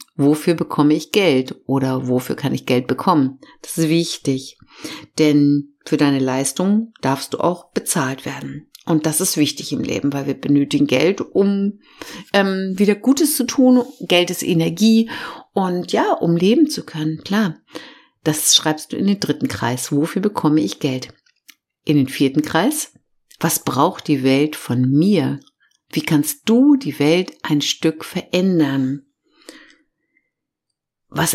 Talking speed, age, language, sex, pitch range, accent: 150 wpm, 50-69, German, female, 145-200 Hz, German